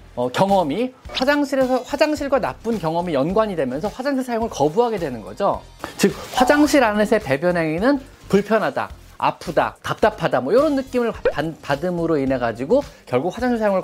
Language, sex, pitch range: Korean, male, 150-240 Hz